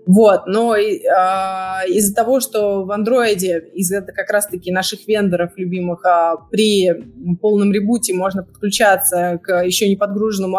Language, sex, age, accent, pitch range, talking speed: Russian, female, 20-39, native, 185-225 Hz, 125 wpm